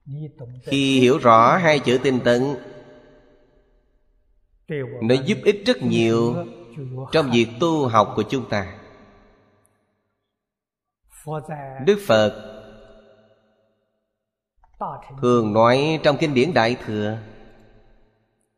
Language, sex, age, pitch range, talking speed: Vietnamese, male, 30-49, 110-135 Hz, 90 wpm